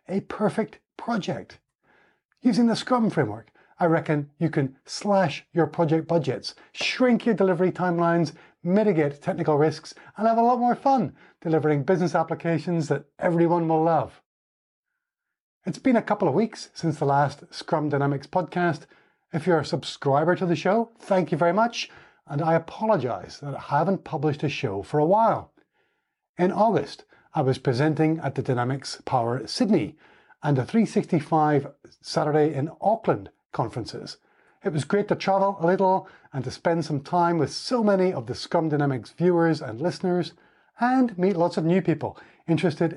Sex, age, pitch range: male, 30-49, 145-185 Hz